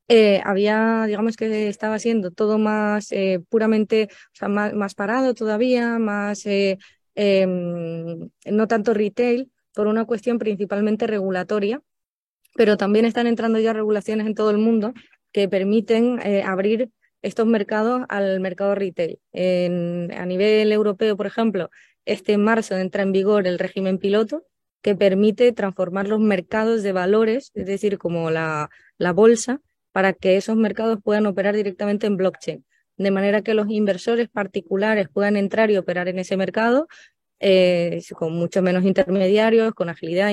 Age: 20-39